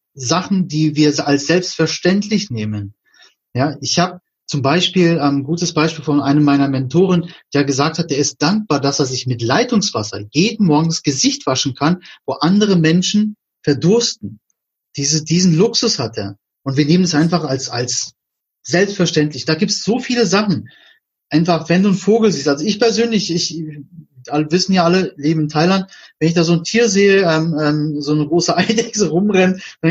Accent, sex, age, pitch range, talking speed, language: German, male, 30-49, 145-200 Hz, 180 wpm, German